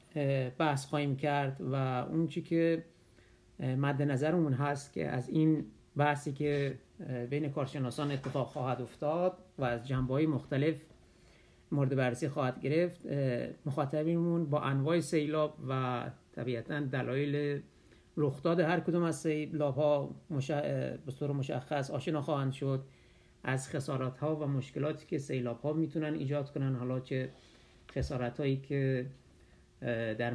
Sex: male